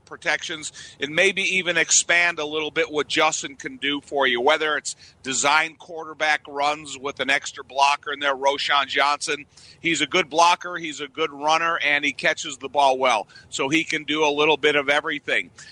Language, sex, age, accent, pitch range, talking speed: English, male, 50-69, American, 140-160 Hz, 190 wpm